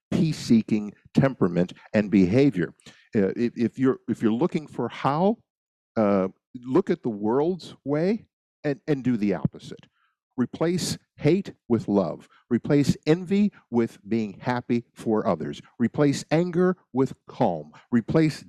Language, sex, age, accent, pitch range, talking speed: English, male, 50-69, American, 100-155 Hz, 130 wpm